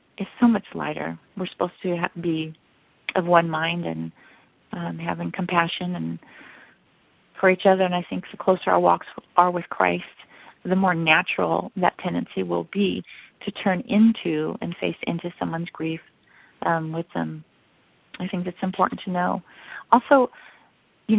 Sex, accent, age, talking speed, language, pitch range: female, American, 30-49, 155 wpm, English, 165-200 Hz